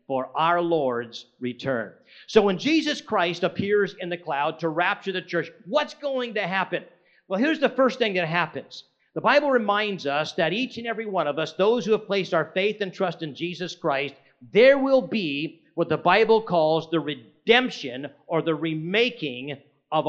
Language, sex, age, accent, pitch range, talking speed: English, male, 50-69, American, 160-215 Hz, 185 wpm